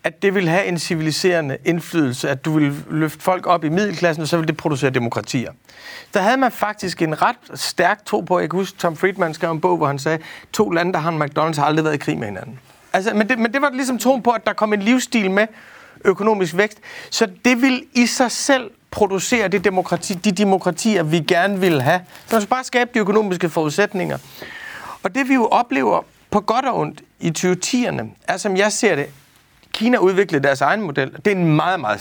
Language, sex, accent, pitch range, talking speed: Danish, male, native, 155-210 Hz, 220 wpm